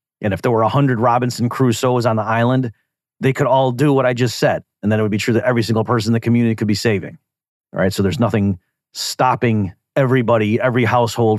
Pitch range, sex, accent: 105-130 Hz, male, American